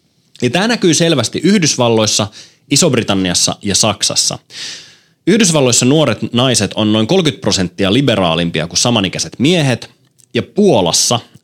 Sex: male